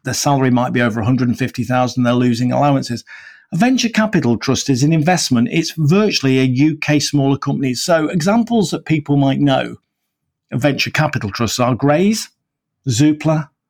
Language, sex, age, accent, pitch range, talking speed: English, male, 50-69, British, 130-165 Hz, 155 wpm